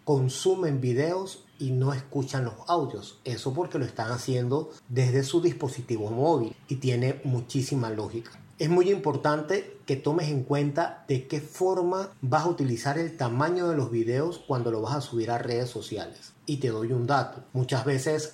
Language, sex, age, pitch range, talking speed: Spanish, male, 30-49, 125-150 Hz, 175 wpm